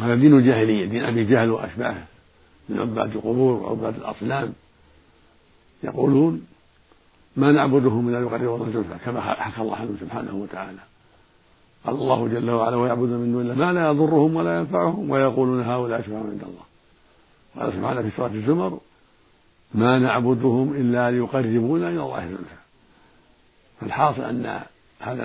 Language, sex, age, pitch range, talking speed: Arabic, male, 60-79, 110-135 Hz, 135 wpm